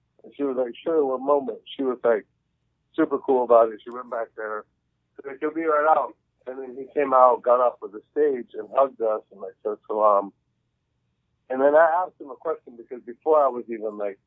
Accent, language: American, English